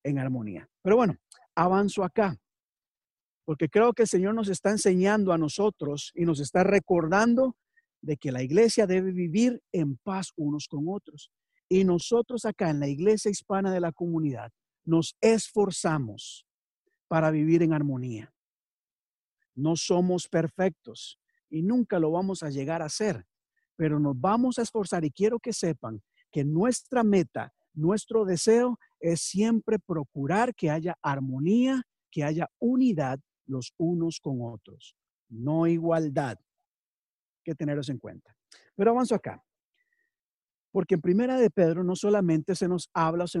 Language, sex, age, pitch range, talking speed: Spanish, male, 50-69, 155-215 Hz, 145 wpm